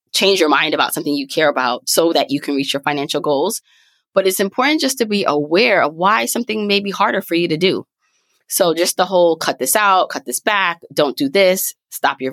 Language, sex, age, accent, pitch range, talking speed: English, female, 20-39, American, 145-205 Hz, 235 wpm